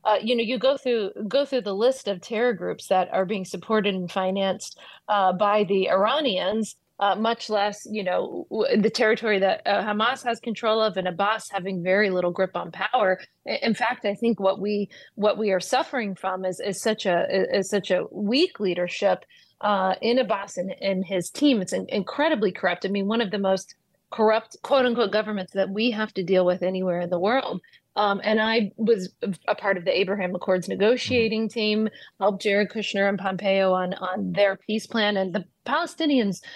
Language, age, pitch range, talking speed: English, 30-49, 190-220 Hz, 200 wpm